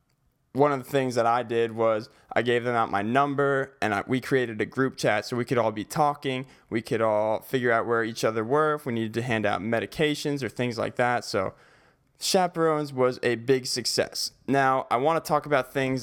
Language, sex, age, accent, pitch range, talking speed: English, male, 20-39, American, 110-135 Hz, 225 wpm